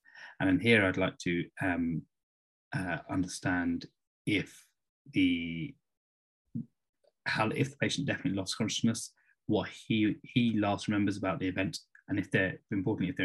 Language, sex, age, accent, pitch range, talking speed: English, male, 20-39, British, 85-110 Hz, 145 wpm